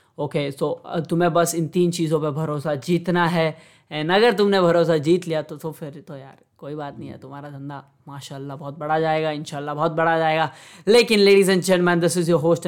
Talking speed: 220 wpm